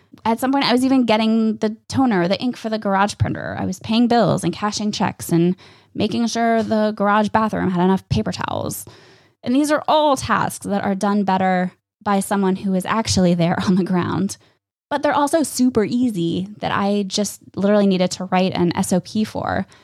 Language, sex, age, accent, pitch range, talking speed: English, female, 20-39, American, 175-225 Hz, 195 wpm